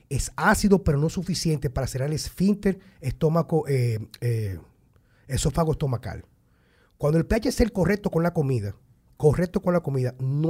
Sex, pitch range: male, 125-170 Hz